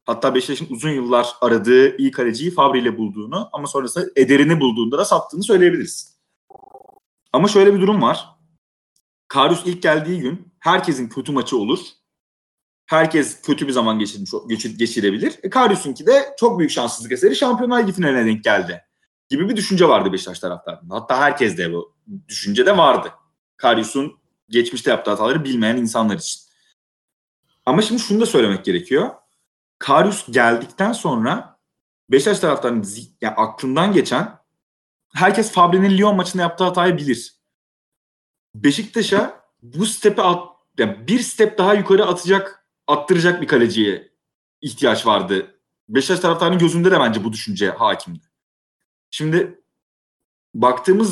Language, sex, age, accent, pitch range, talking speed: Turkish, male, 30-49, native, 130-200 Hz, 135 wpm